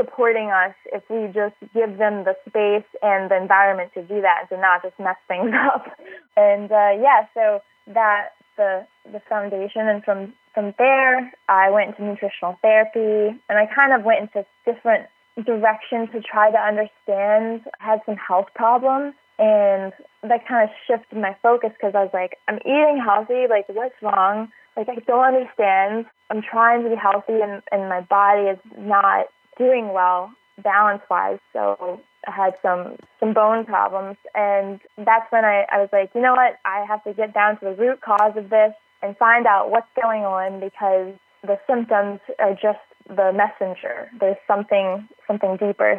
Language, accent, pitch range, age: English, American, 200-230 Hz, 20-39